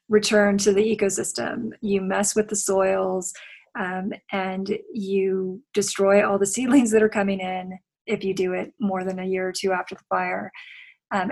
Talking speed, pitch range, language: 180 wpm, 195-220 Hz, English